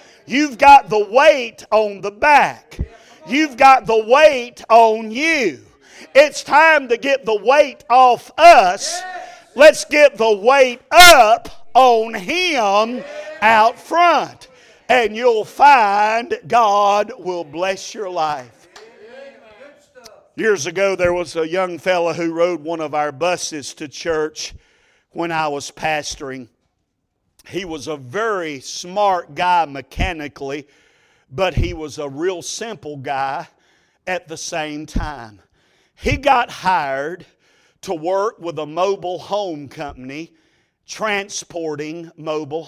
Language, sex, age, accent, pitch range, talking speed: English, male, 50-69, American, 155-240 Hz, 120 wpm